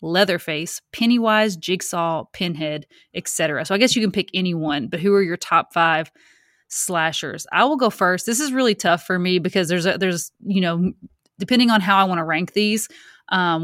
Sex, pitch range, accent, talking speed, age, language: female, 170-200 Hz, American, 195 wpm, 20-39, English